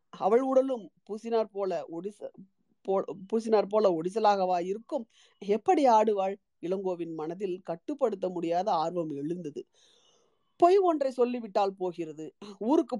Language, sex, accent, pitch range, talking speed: Tamil, female, native, 185-255 Hz, 105 wpm